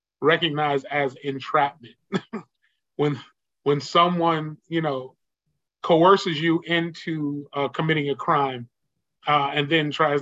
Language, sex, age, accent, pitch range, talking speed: English, male, 30-49, American, 135-160 Hz, 110 wpm